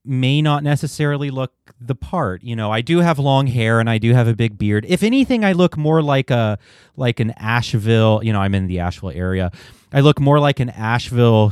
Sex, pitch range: male, 110-150 Hz